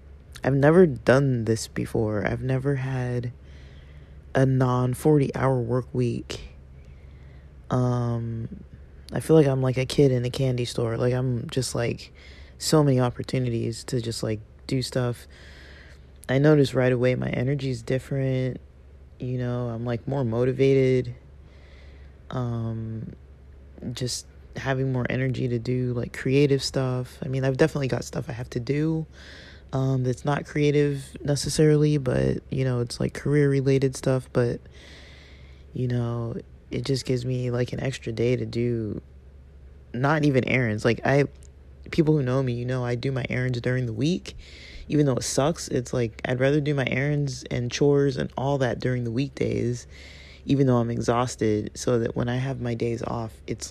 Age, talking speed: 20-39, 165 wpm